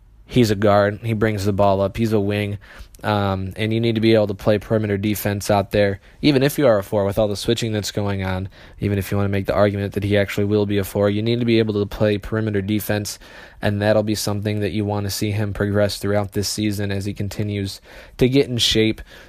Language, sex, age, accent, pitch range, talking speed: English, male, 20-39, American, 100-110 Hz, 255 wpm